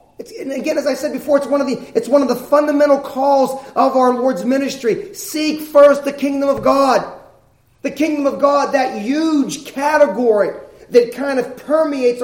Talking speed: 185 wpm